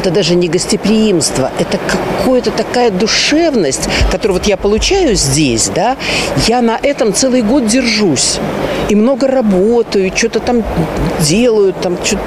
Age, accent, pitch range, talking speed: 50-69, native, 200-295 Hz, 135 wpm